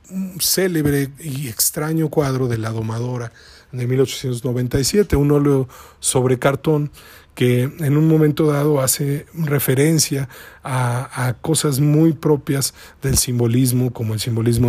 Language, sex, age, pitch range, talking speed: Spanish, male, 40-59, 120-145 Hz, 125 wpm